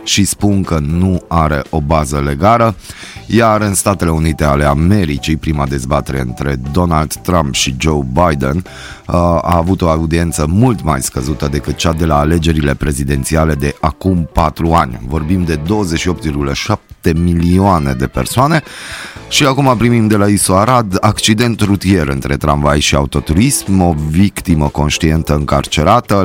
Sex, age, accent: male, 30-49, native